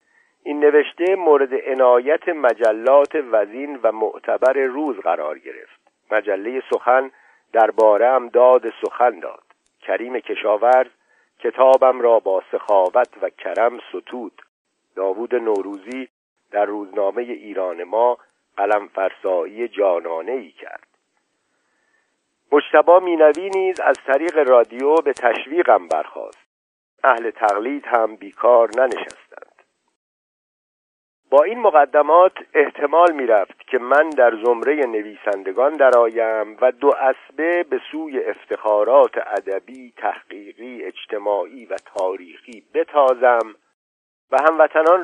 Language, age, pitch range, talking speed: Persian, 50-69, 120-185 Hz, 100 wpm